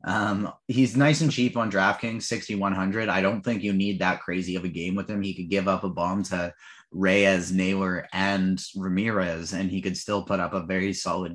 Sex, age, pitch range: male, 30-49, 95-125 Hz